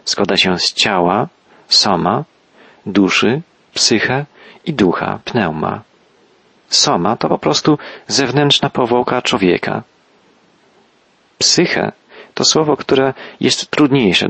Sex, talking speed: male, 95 wpm